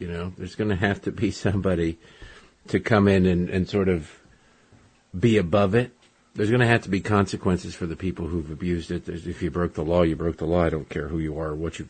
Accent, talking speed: American, 255 wpm